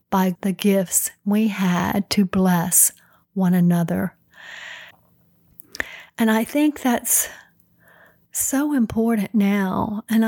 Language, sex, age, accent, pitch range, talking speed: English, female, 50-69, American, 200-235 Hz, 95 wpm